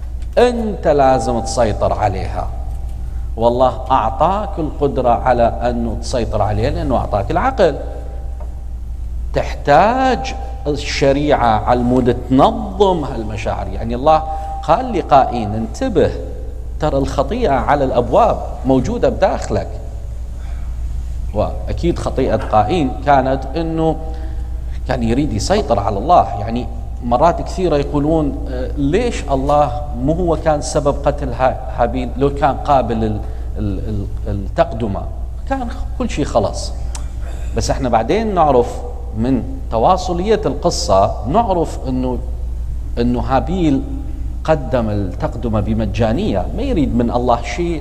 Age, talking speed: 50-69, 100 wpm